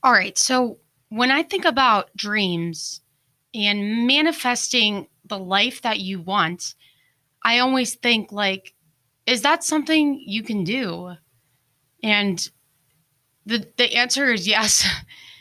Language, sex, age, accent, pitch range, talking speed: English, female, 20-39, American, 160-235 Hz, 120 wpm